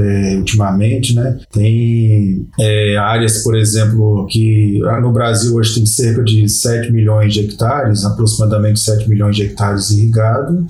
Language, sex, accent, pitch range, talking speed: Portuguese, male, Brazilian, 105-125 Hz, 145 wpm